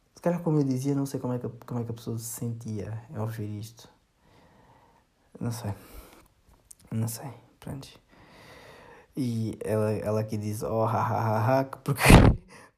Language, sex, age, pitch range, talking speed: Portuguese, male, 20-39, 110-125 Hz, 170 wpm